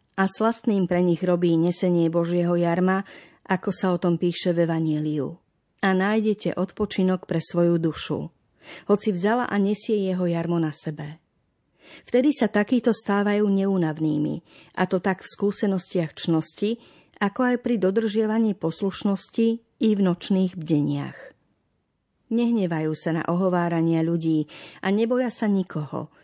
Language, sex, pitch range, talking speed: Slovak, female, 170-210 Hz, 135 wpm